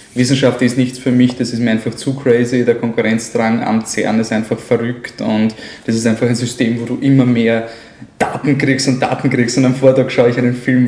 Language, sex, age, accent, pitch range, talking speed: German, male, 20-39, German, 110-125 Hz, 220 wpm